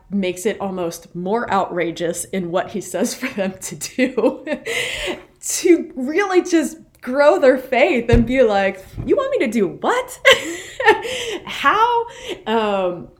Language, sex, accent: English, female, American